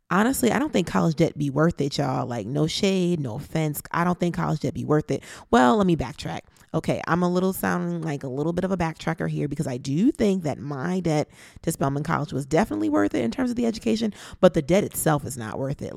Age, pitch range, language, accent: 30-49, 140-175 Hz, English, American